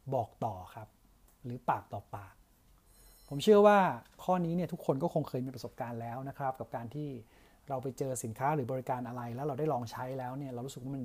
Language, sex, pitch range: Thai, male, 125-170 Hz